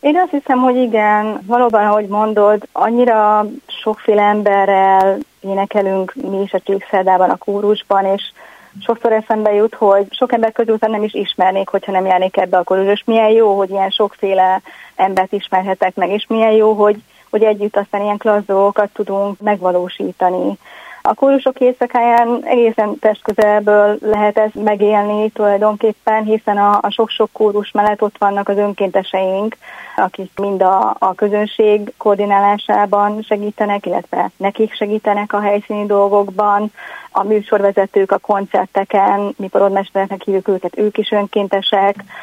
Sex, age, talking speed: female, 30-49, 140 wpm